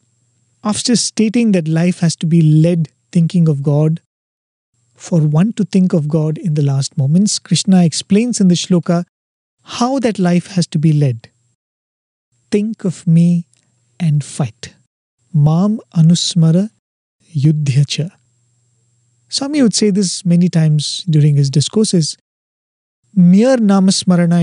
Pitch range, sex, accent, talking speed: 145-185 Hz, male, Indian, 130 wpm